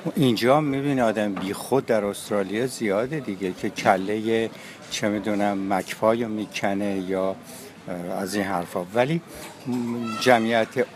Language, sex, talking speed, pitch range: Persian, male, 120 wpm, 100-130 Hz